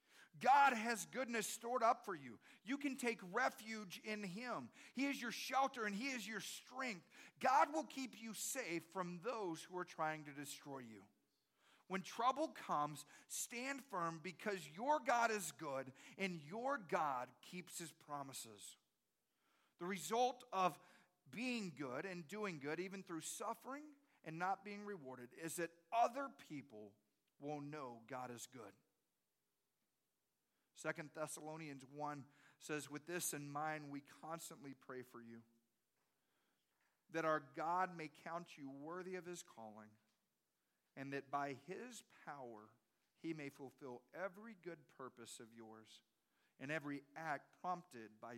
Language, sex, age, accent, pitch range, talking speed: English, male, 40-59, American, 135-200 Hz, 145 wpm